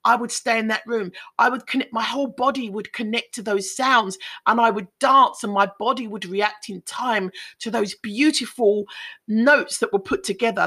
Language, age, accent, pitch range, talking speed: English, 40-59, British, 205-275 Hz, 200 wpm